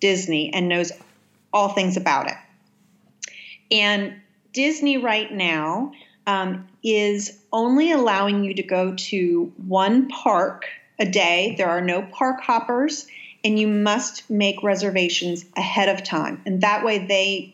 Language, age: English, 40-59